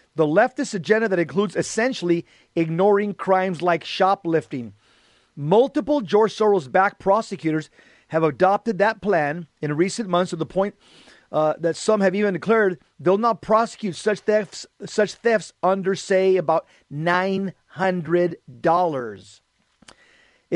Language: English